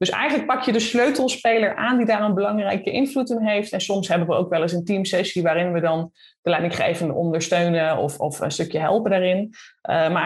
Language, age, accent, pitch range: Dutch, 20-39, Dutch, 185-245 Hz